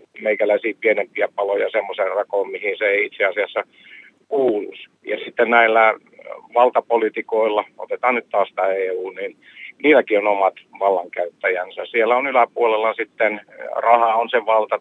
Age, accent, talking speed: 50-69, native, 135 wpm